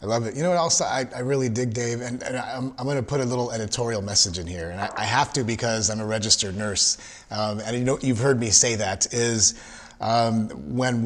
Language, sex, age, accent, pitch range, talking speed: English, male, 30-49, American, 105-125 Hz, 255 wpm